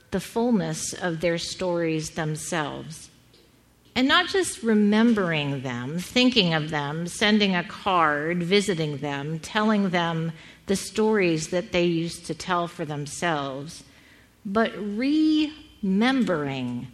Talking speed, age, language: 115 wpm, 50-69, English